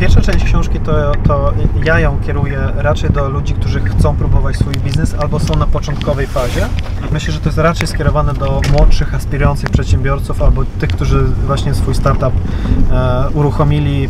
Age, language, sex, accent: 20-39, Polish, male, native